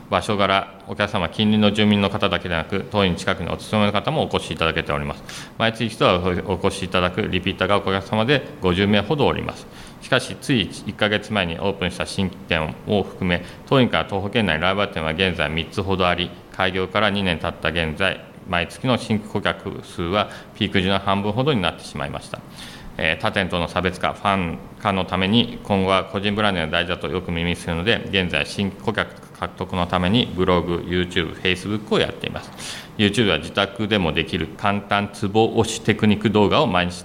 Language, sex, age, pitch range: Japanese, male, 40-59, 90-105 Hz